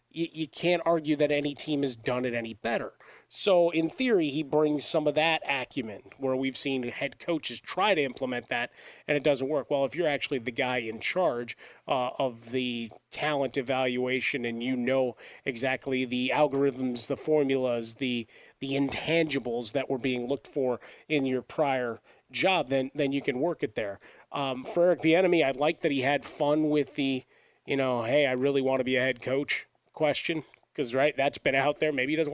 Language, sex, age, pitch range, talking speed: English, male, 30-49, 130-150 Hz, 195 wpm